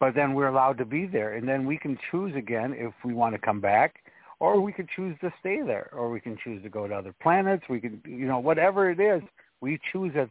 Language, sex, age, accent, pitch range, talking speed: English, male, 60-79, American, 115-145 Hz, 260 wpm